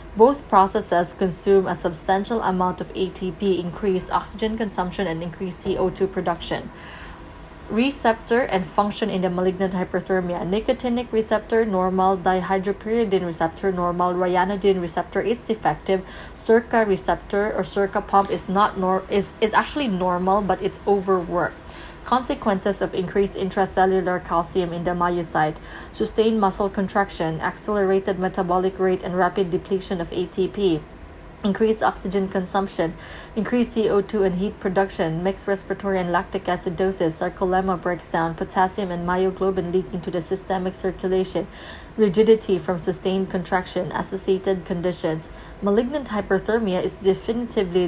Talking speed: 125 wpm